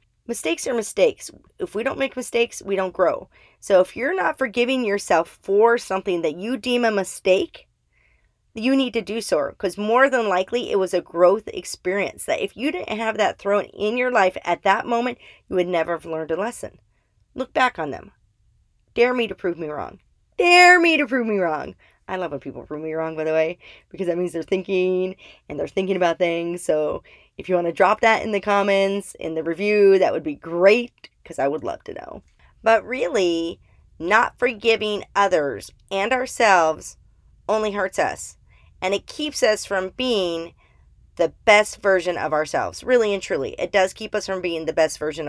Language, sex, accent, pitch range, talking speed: English, female, American, 175-235 Hz, 200 wpm